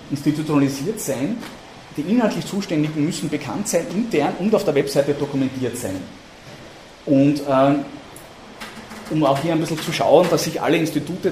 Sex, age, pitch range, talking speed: male, 30-49, 130-150 Hz, 150 wpm